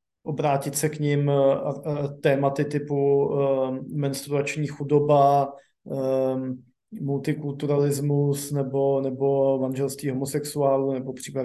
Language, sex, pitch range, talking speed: Slovak, male, 135-145 Hz, 90 wpm